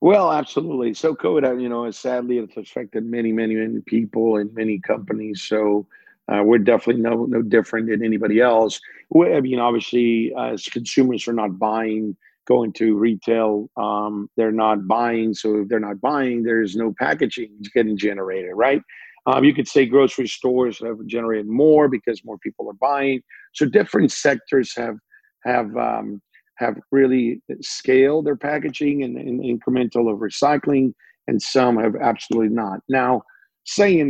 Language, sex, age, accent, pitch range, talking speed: English, male, 50-69, American, 110-130 Hz, 160 wpm